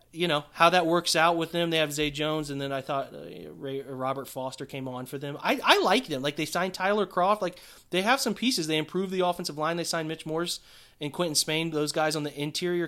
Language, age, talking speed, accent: English, 20-39, 255 wpm, American